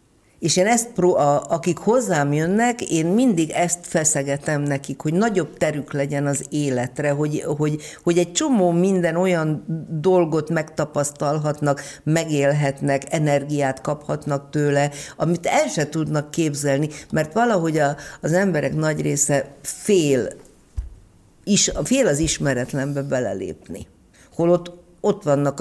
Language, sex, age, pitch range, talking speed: Hungarian, female, 50-69, 140-180 Hz, 125 wpm